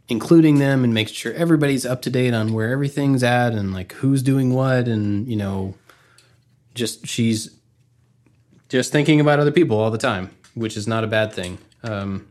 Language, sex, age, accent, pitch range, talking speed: English, male, 20-39, American, 110-135 Hz, 185 wpm